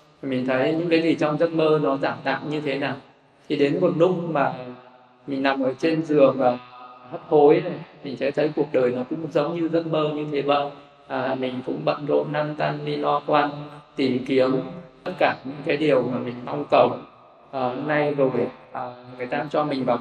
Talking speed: 215 wpm